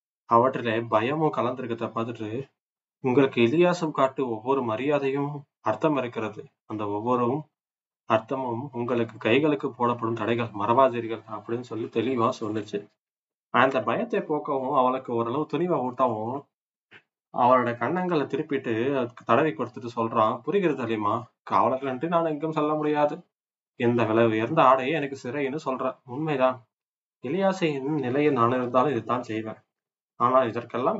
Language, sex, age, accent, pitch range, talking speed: Tamil, male, 20-39, native, 115-140 Hz, 105 wpm